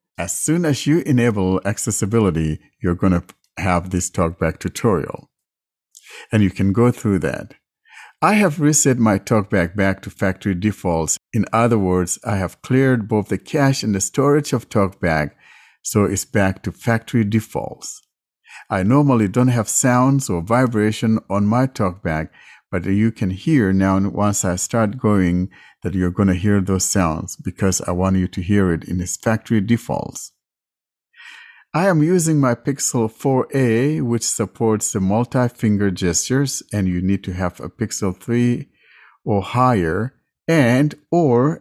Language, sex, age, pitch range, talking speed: English, male, 60-79, 95-125 Hz, 155 wpm